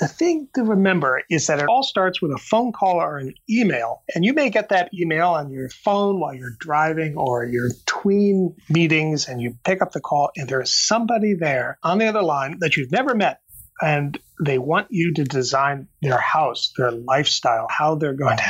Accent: American